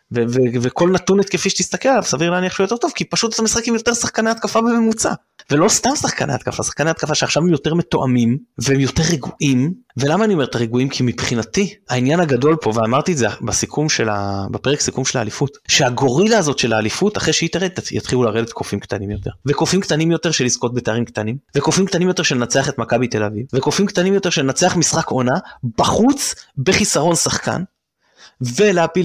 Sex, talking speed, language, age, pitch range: male, 160 wpm, Hebrew, 20-39, 130-205 Hz